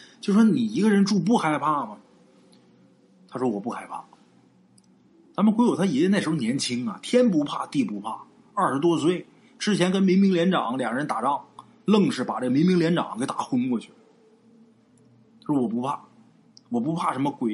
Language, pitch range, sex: Chinese, 155-235 Hz, male